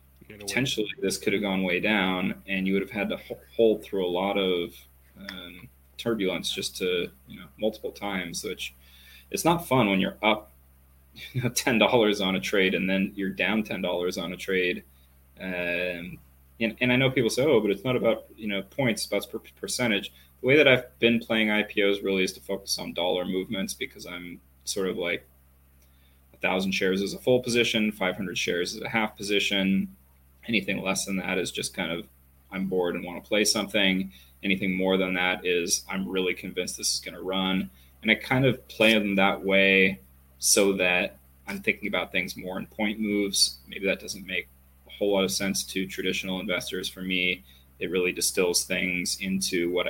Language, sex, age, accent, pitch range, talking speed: English, male, 20-39, American, 70-100 Hz, 200 wpm